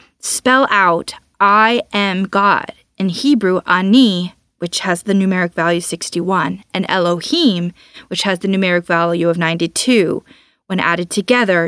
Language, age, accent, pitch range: English, 20-39, American, 180-230 Hz